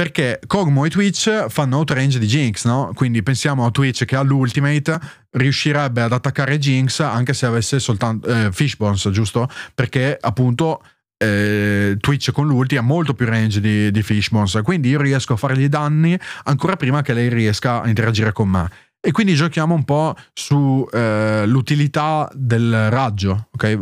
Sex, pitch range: male, 115-150 Hz